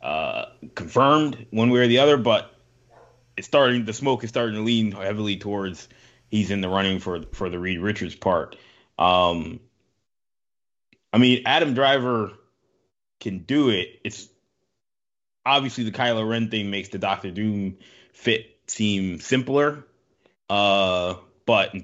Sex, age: male, 20-39